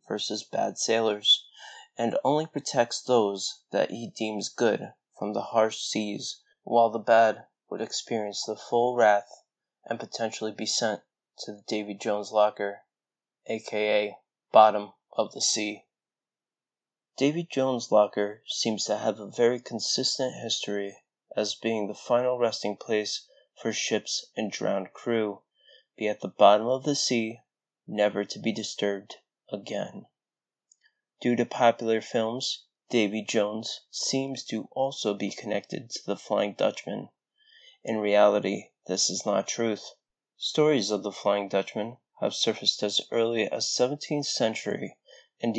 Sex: male